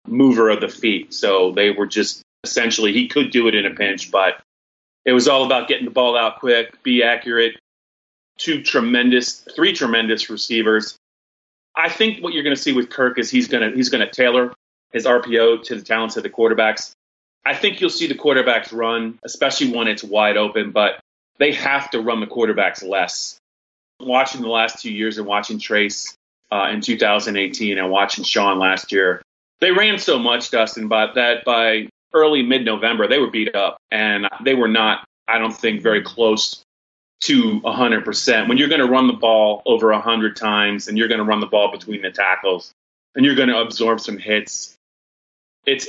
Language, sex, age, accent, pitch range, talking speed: English, male, 30-49, American, 105-130 Hz, 190 wpm